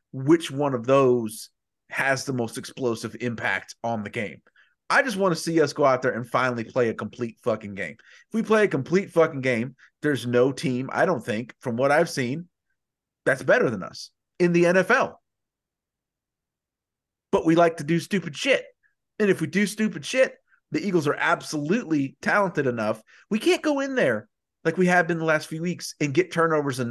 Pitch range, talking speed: 125-170 Hz, 195 wpm